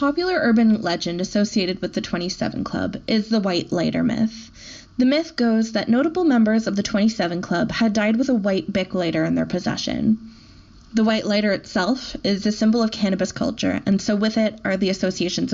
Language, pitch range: English, 185-230 Hz